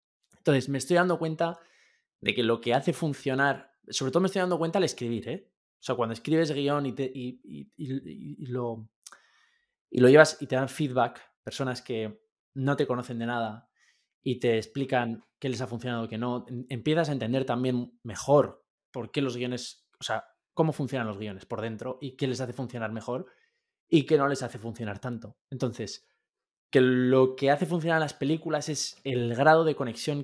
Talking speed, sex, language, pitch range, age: 195 wpm, male, Spanish, 120-155 Hz, 20-39